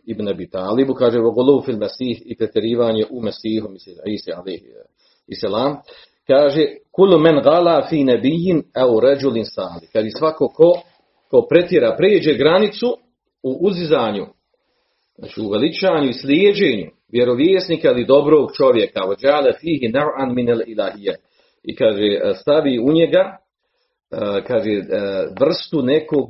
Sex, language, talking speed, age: male, Croatian, 120 wpm, 40-59